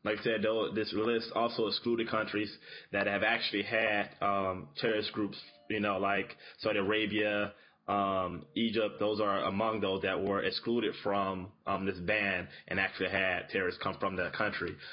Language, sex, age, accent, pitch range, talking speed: English, male, 20-39, American, 105-120 Hz, 170 wpm